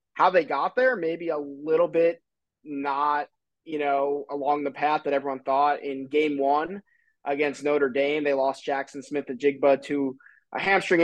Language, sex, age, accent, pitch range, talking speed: English, male, 20-39, American, 135-155 Hz, 175 wpm